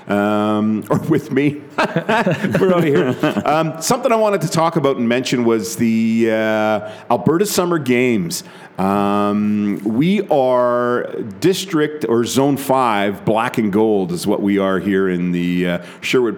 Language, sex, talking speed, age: English, male, 150 wpm, 40-59